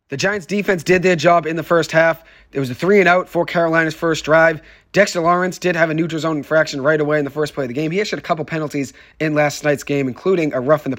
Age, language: 30-49, English